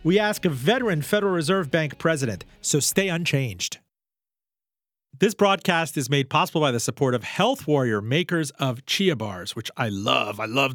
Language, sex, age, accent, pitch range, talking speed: English, male, 40-59, American, 135-195 Hz, 175 wpm